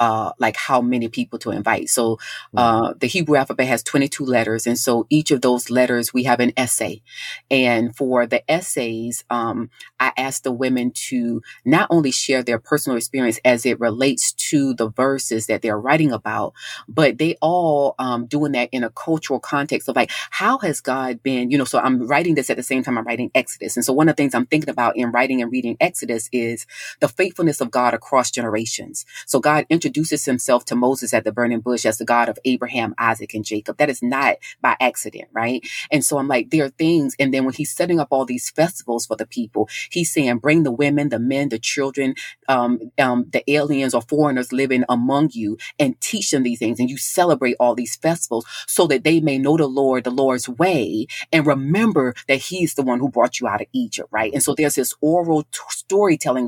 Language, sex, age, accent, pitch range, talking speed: English, female, 30-49, American, 120-150 Hz, 215 wpm